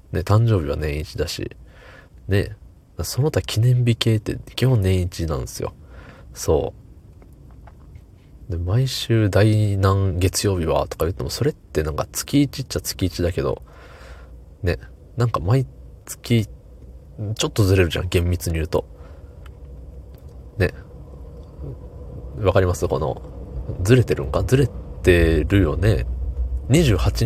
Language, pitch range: Japanese, 75-110 Hz